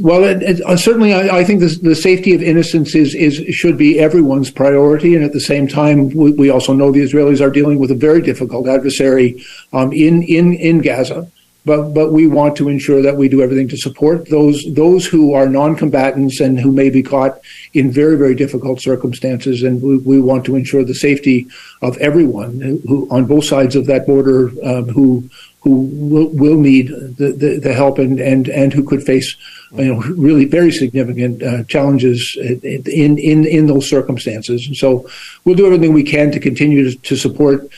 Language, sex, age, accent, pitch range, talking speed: English, male, 50-69, American, 135-150 Hz, 200 wpm